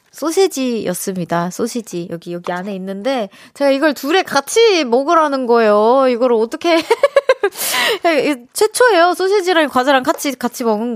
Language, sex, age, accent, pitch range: Korean, female, 20-39, native, 205-285 Hz